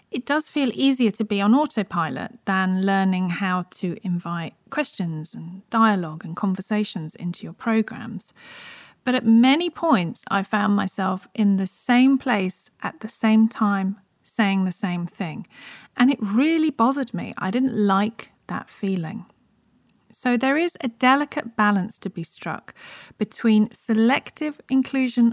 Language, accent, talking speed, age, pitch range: English, British, 145 wpm, 40-59, 190-255 Hz